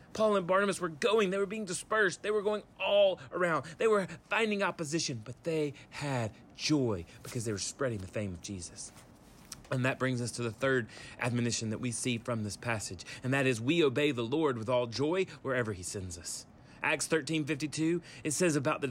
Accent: American